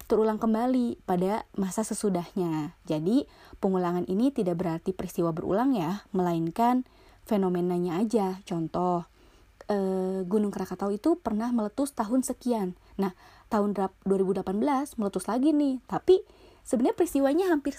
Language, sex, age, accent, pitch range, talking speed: Indonesian, female, 20-39, native, 185-240 Hz, 120 wpm